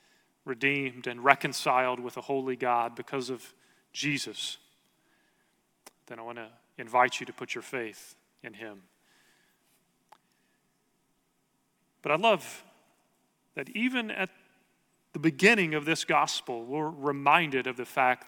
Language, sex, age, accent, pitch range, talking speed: English, male, 40-59, American, 125-155 Hz, 125 wpm